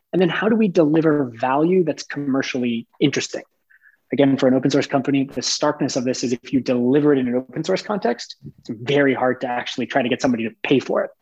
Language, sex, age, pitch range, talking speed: English, male, 20-39, 135-155 Hz, 230 wpm